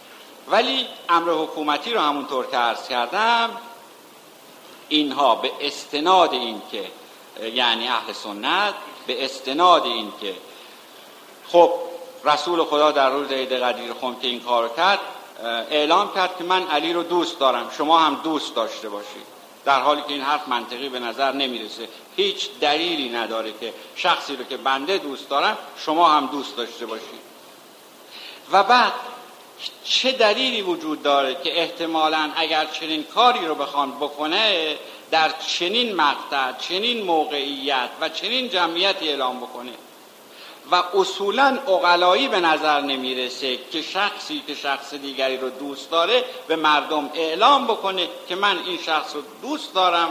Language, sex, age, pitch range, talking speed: Persian, male, 60-79, 140-185 Hz, 145 wpm